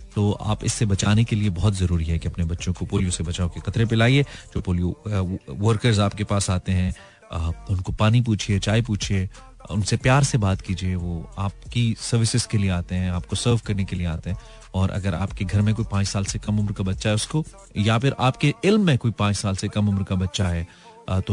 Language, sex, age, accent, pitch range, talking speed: Hindi, male, 30-49, native, 95-115 Hz, 225 wpm